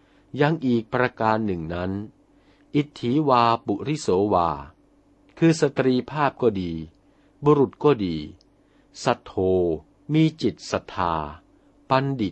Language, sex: Thai, male